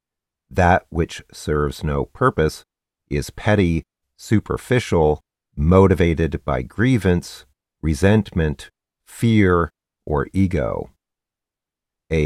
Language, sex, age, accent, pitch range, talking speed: English, male, 50-69, American, 75-95 Hz, 80 wpm